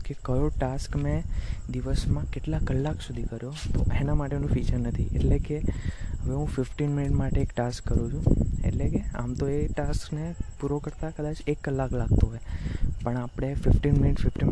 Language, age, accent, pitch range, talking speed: Gujarati, 20-39, native, 115-140 Hz, 175 wpm